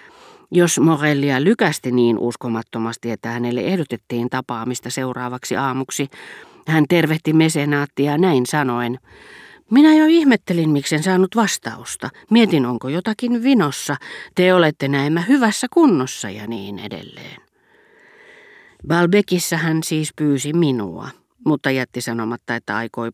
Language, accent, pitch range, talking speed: Finnish, native, 125-175 Hz, 115 wpm